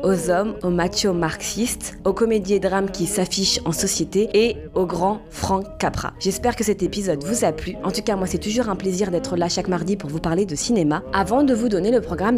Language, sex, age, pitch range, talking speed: French, female, 20-39, 175-240 Hz, 235 wpm